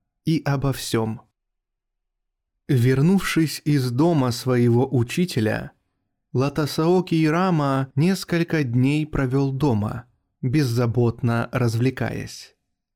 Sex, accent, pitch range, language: male, native, 120-155 Hz, Russian